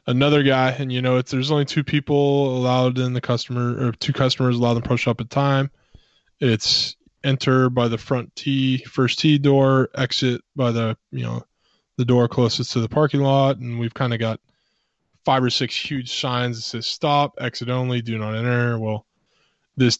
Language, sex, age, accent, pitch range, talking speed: English, male, 20-39, American, 120-140 Hz, 200 wpm